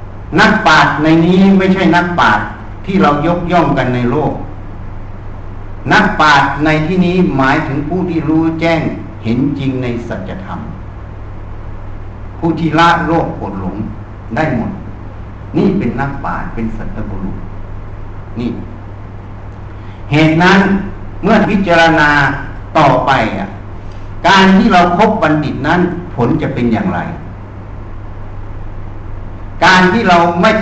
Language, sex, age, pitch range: Thai, male, 60-79, 100-170 Hz